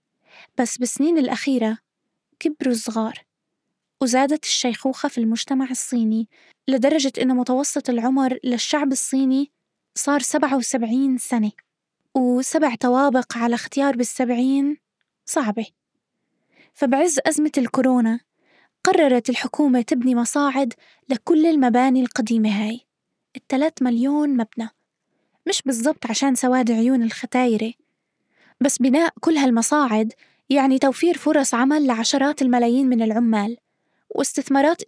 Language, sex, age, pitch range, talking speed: Arabic, female, 20-39, 240-280 Hz, 100 wpm